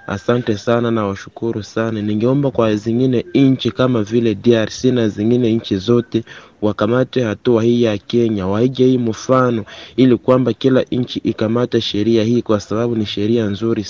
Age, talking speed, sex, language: 30-49, 150 wpm, male, Swahili